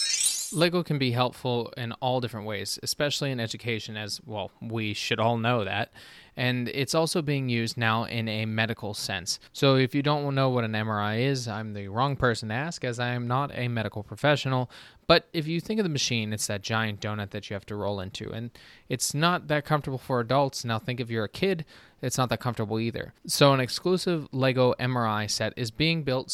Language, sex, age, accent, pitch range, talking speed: English, male, 20-39, American, 110-130 Hz, 215 wpm